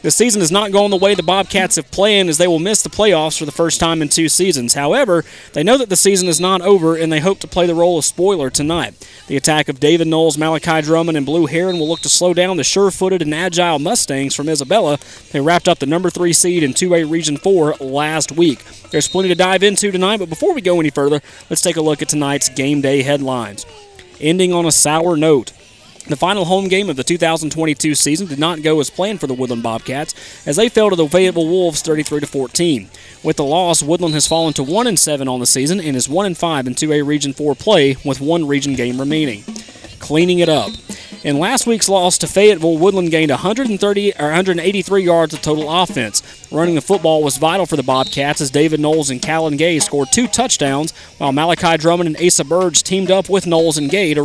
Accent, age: American, 30-49